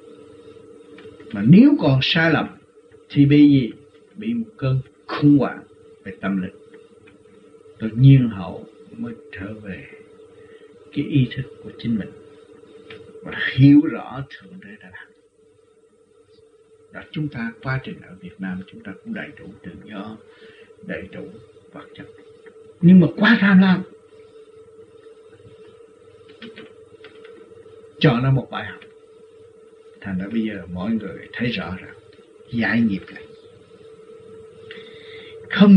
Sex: male